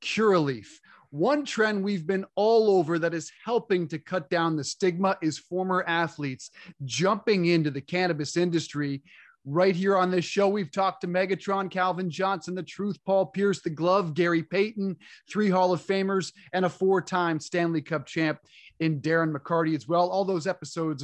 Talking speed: 170 wpm